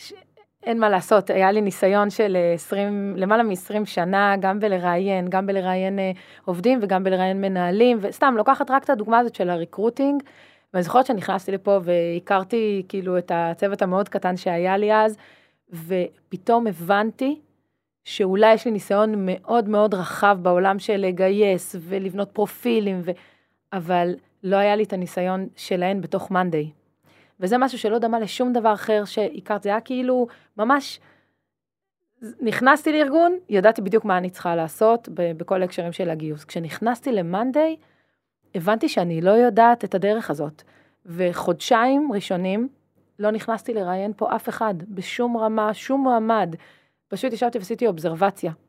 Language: Hebrew